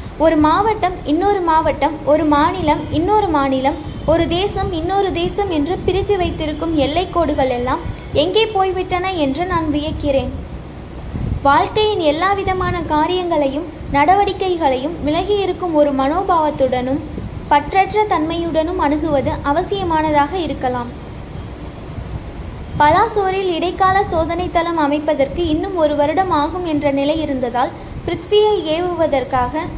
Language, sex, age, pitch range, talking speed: Tamil, female, 20-39, 295-370 Hz, 95 wpm